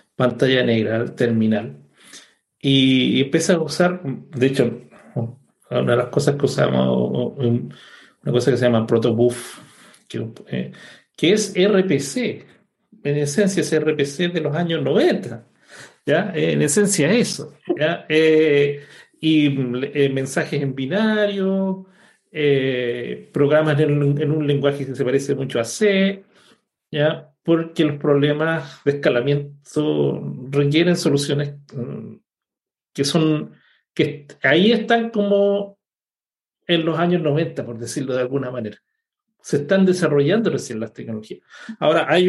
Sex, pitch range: male, 130-170 Hz